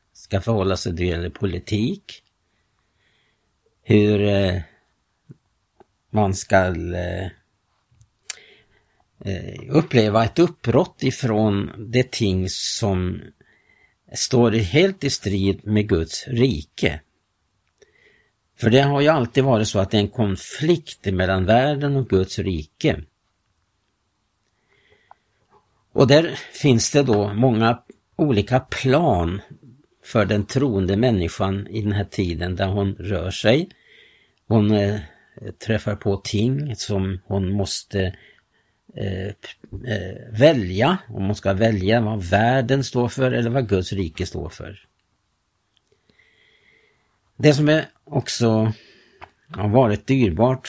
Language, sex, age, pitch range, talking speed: Swedish, male, 50-69, 95-120 Hz, 110 wpm